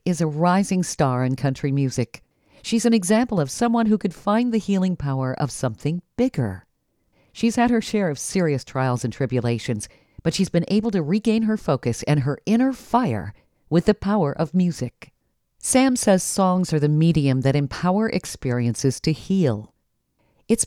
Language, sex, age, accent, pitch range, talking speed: English, female, 50-69, American, 130-200 Hz, 170 wpm